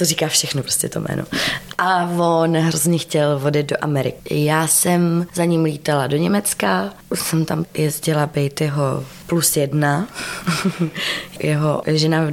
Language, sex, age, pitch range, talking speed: Czech, female, 20-39, 145-170 Hz, 145 wpm